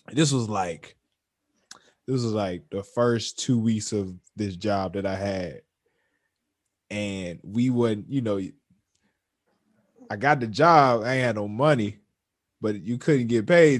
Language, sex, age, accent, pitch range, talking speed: English, male, 20-39, American, 100-120 Hz, 150 wpm